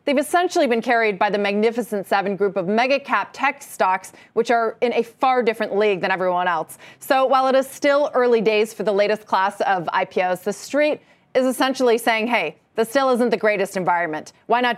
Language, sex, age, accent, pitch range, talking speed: English, female, 30-49, American, 200-255 Hz, 205 wpm